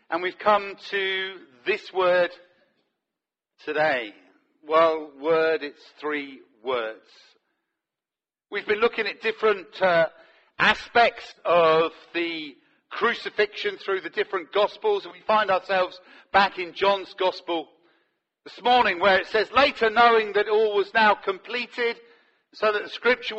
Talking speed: 130 wpm